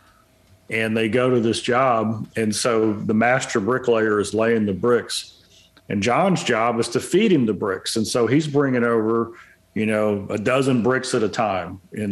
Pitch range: 110-135 Hz